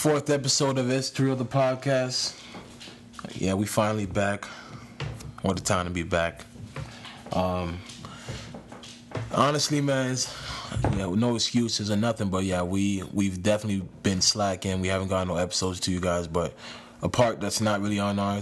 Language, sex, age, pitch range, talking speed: English, male, 20-39, 90-115 Hz, 165 wpm